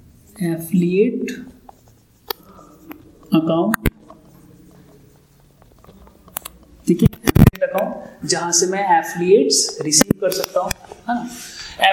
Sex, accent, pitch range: male, native, 170-220 Hz